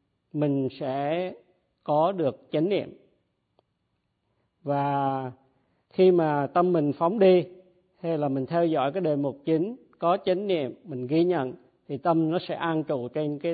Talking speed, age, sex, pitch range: 160 wpm, 50-69, male, 135-170 Hz